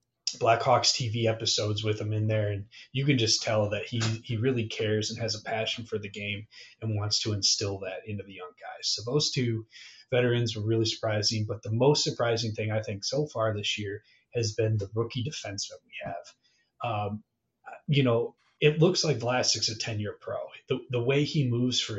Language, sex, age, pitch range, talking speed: English, male, 30-49, 110-120 Hz, 200 wpm